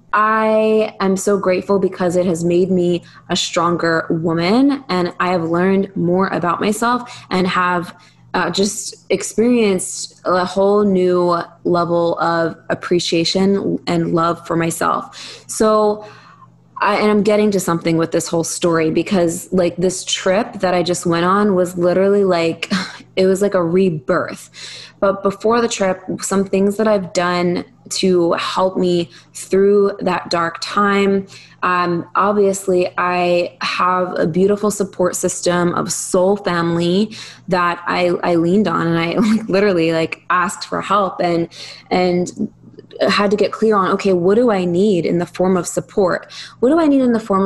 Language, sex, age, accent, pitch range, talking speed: English, female, 20-39, American, 175-200 Hz, 155 wpm